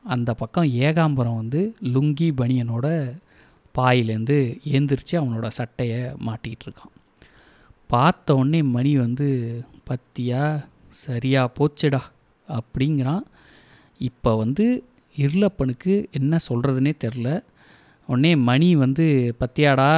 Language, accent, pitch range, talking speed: Tamil, native, 125-160 Hz, 85 wpm